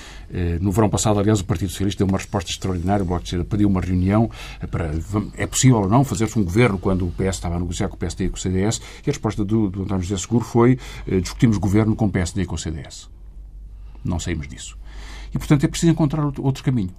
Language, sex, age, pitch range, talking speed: Portuguese, male, 50-69, 90-125 Hz, 230 wpm